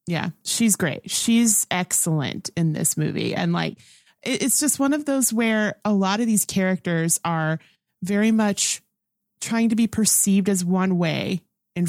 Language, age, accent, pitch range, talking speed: English, 30-49, American, 175-220 Hz, 160 wpm